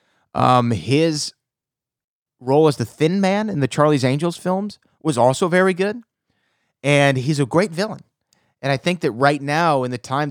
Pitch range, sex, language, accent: 125-155 Hz, male, English, American